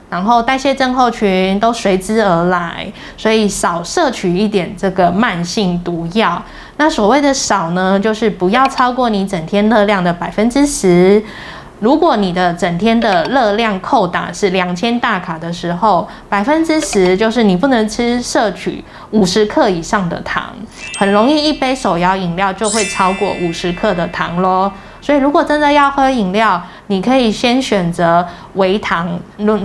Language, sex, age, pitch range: Chinese, female, 20-39, 185-240 Hz